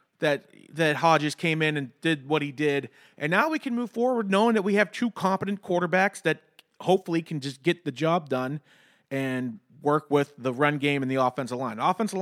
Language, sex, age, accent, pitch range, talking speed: English, male, 30-49, American, 140-190 Hz, 210 wpm